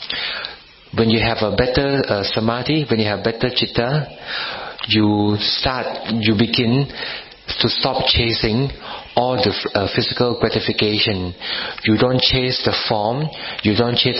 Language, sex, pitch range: Thai, male, 105-125 Hz